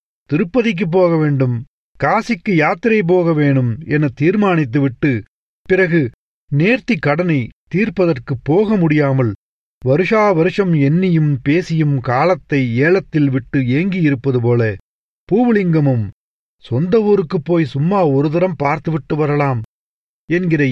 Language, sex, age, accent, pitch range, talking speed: Tamil, male, 40-59, native, 130-175 Hz, 95 wpm